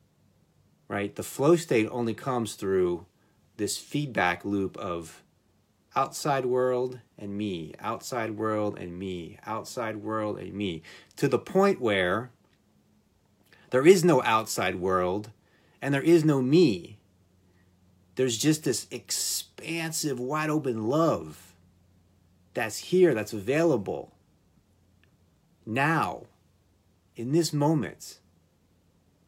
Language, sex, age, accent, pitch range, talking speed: English, male, 30-49, American, 90-135 Hz, 110 wpm